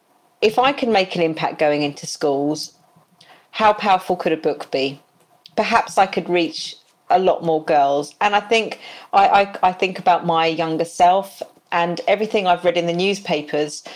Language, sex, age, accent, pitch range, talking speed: English, female, 40-59, British, 160-215 Hz, 175 wpm